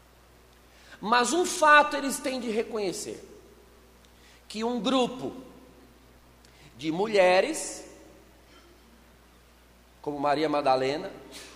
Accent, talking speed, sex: Brazilian, 80 wpm, male